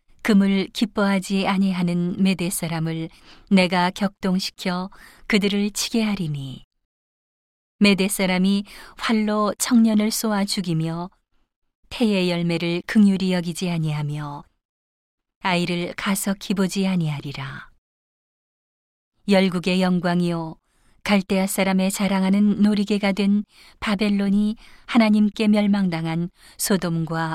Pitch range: 170-200 Hz